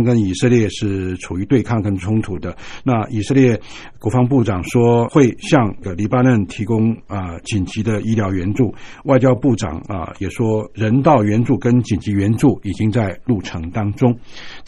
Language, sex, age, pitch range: Chinese, male, 60-79, 105-130 Hz